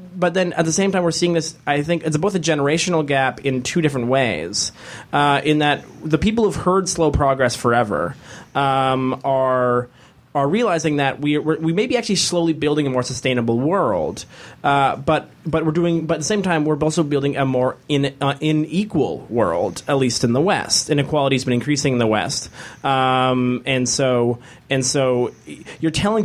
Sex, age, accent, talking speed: male, 20-39, American, 190 wpm